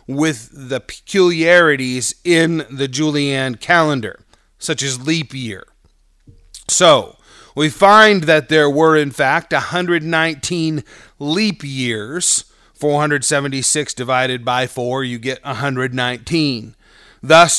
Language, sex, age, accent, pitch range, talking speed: English, male, 30-49, American, 135-170 Hz, 100 wpm